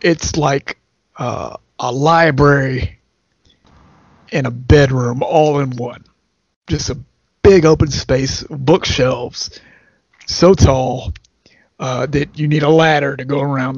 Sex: male